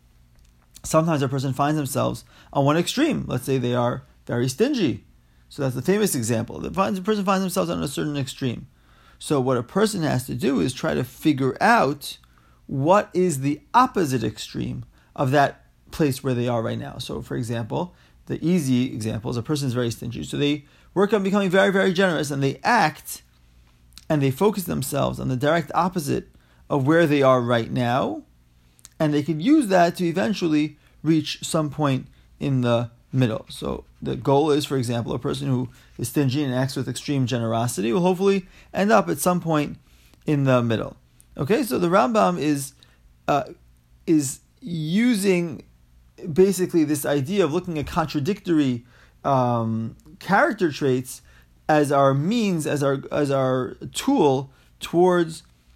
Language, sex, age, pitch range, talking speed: English, male, 30-49, 115-165 Hz, 165 wpm